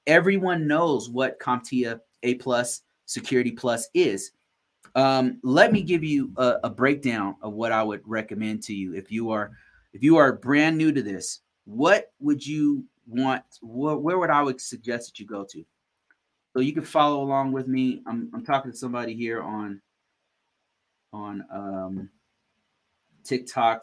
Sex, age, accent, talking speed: male, 30-49, American, 160 wpm